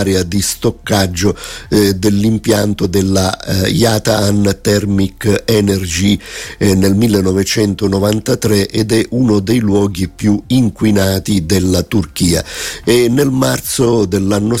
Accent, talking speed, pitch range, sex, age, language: native, 105 wpm, 95-110 Hz, male, 50-69, Italian